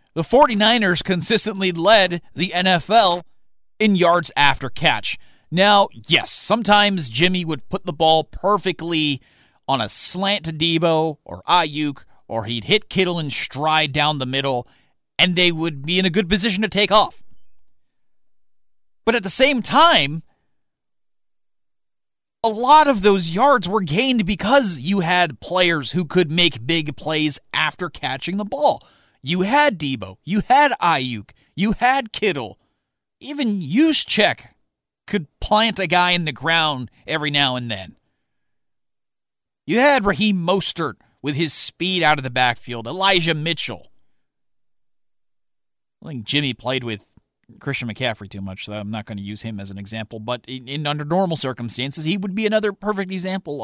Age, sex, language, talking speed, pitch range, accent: 30-49, male, English, 155 wpm, 135-205 Hz, American